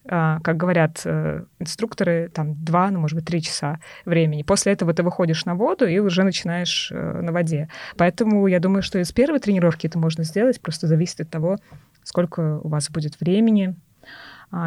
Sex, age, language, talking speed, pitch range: female, 20-39, Russian, 170 wpm, 160-190 Hz